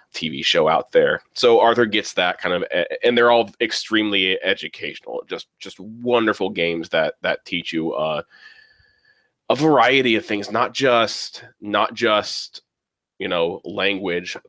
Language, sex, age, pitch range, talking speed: English, male, 20-39, 95-120 Hz, 145 wpm